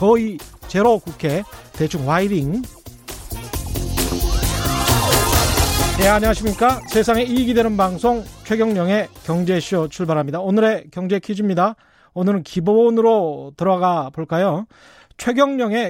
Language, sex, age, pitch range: Korean, male, 30-49, 160-225 Hz